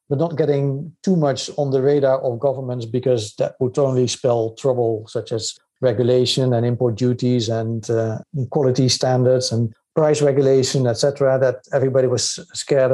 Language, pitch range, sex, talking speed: English, 125-150 Hz, male, 160 wpm